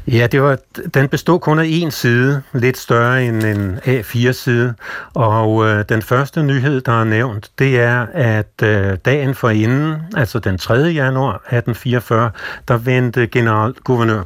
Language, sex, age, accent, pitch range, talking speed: Danish, male, 60-79, native, 110-130 Hz, 145 wpm